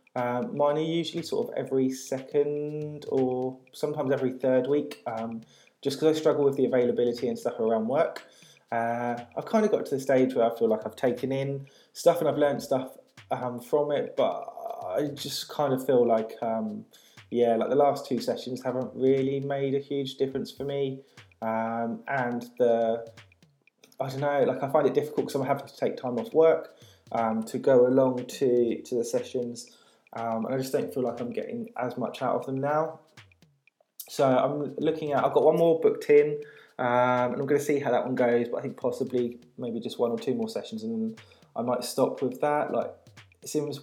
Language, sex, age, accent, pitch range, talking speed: English, male, 20-39, British, 120-145 Hz, 210 wpm